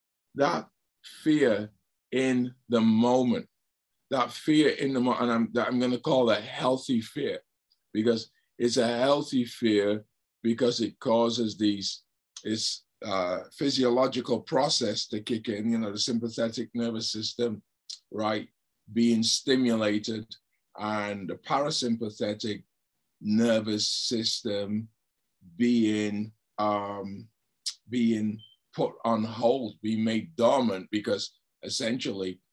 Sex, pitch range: male, 110-140 Hz